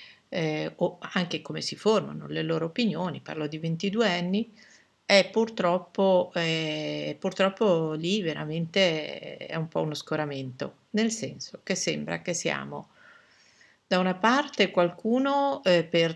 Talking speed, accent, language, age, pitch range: 130 wpm, native, Italian, 50-69, 155-200 Hz